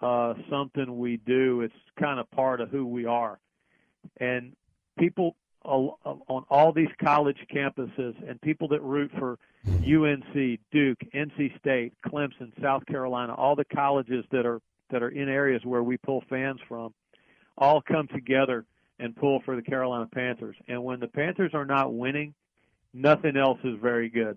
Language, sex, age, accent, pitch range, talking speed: English, male, 50-69, American, 120-140 Hz, 155 wpm